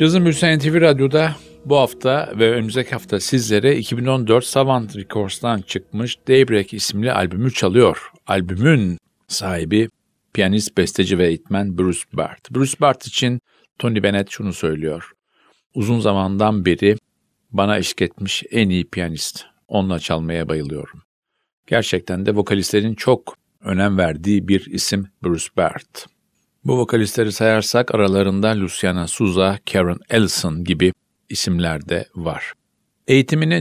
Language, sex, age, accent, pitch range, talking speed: Turkish, male, 50-69, native, 90-120 Hz, 120 wpm